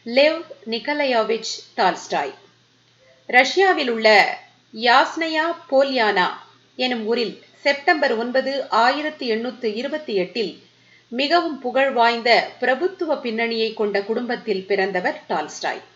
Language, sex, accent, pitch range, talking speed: Tamil, female, native, 215-285 Hz, 40 wpm